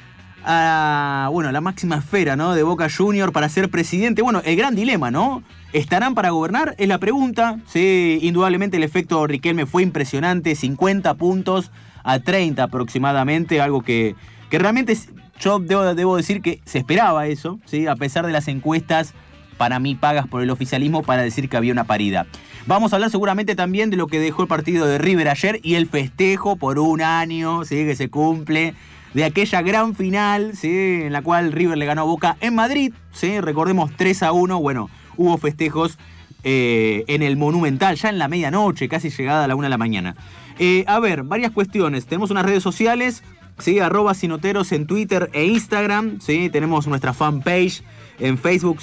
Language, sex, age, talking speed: Spanish, male, 30-49, 185 wpm